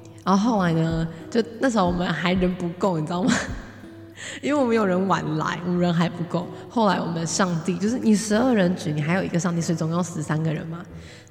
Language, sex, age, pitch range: Chinese, female, 20-39, 160-195 Hz